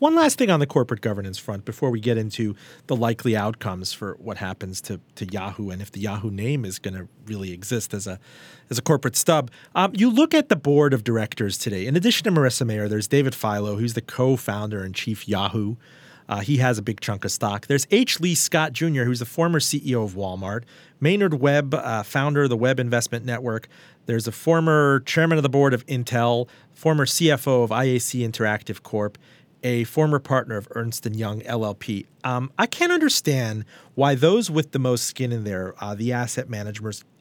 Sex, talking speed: male, 205 wpm